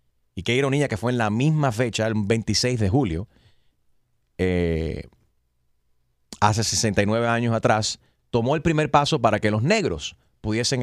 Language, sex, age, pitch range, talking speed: Spanish, male, 30-49, 110-155 Hz, 150 wpm